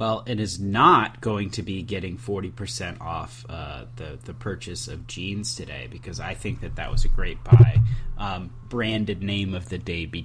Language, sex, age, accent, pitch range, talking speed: English, male, 30-49, American, 100-120 Hz, 195 wpm